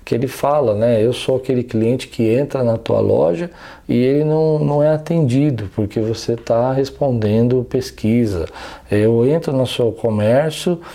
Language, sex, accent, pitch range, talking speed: Portuguese, male, Brazilian, 115-165 Hz, 160 wpm